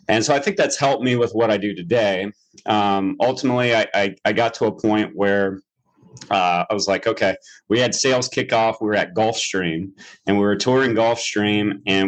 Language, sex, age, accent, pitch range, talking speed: English, male, 30-49, American, 100-110 Hz, 205 wpm